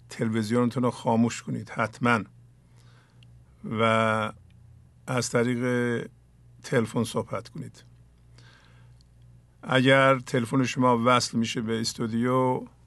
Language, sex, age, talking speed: English, male, 50-69, 85 wpm